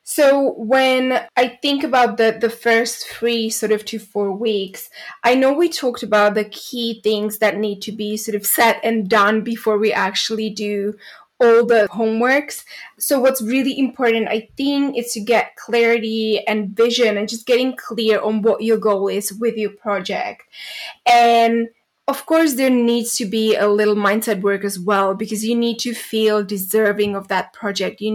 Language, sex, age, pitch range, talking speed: English, female, 20-39, 215-245 Hz, 180 wpm